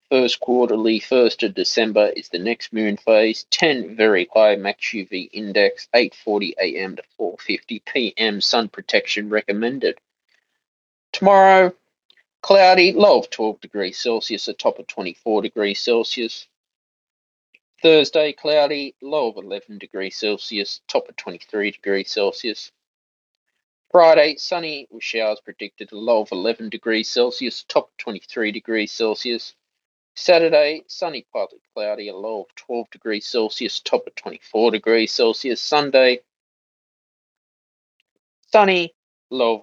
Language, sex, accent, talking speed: English, male, Australian, 125 wpm